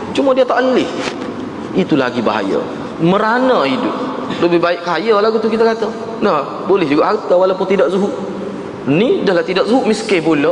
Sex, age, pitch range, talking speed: male, 30-49, 175-230 Hz, 165 wpm